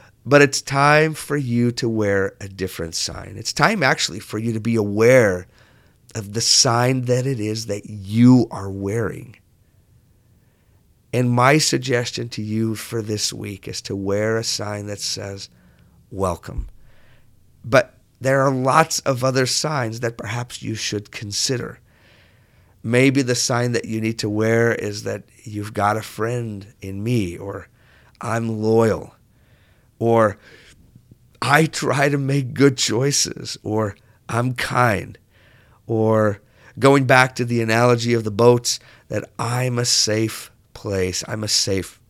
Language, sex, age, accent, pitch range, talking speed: English, male, 50-69, American, 105-130 Hz, 145 wpm